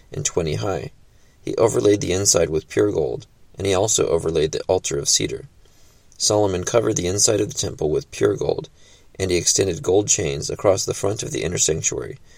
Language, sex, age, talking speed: English, male, 20-39, 195 wpm